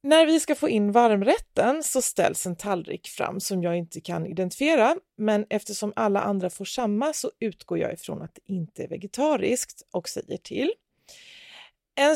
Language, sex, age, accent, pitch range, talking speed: Swedish, female, 30-49, native, 175-265 Hz, 175 wpm